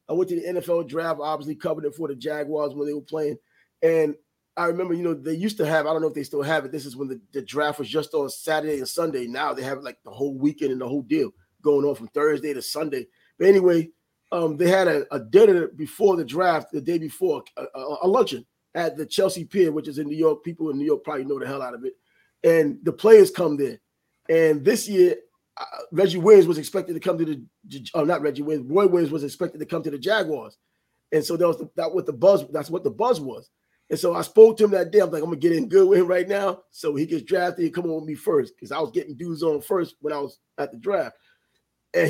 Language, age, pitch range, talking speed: English, 30-49, 150-200 Hz, 270 wpm